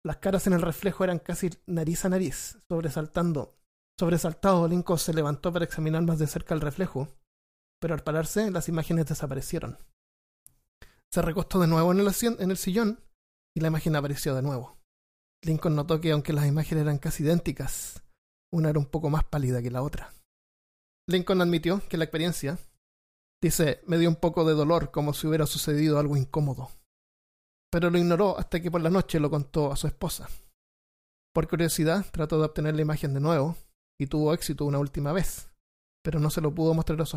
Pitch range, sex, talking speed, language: 140-170 Hz, male, 185 wpm, Spanish